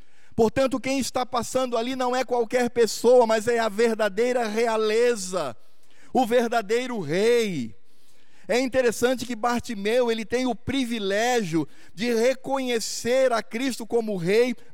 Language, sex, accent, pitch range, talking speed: Portuguese, male, Brazilian, 205-250 Hz, 125 wpm